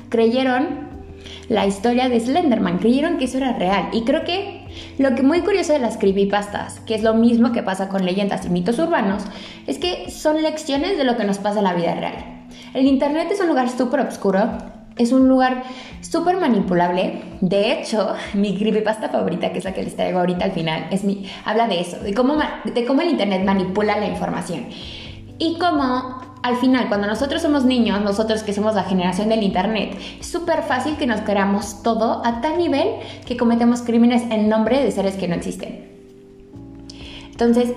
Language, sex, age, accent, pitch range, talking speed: Spanish, female, 20-39, Mexican, 200-265 Hz, 190 wpm